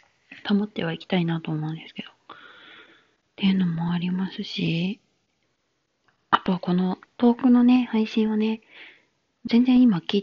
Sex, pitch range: female, 175-220 Hz